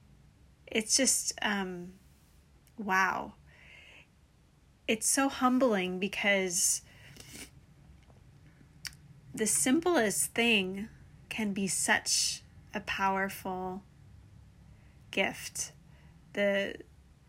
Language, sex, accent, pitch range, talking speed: English, female, American, 190-230 Hz, 60 wpm